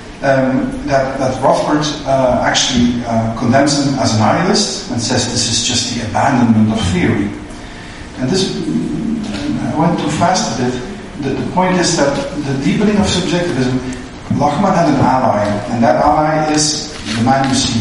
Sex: male